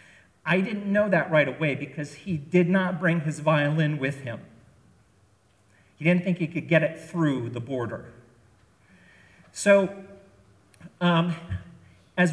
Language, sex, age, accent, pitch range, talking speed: English, male, 50-69, American, 125-185 Hz, 135 wpm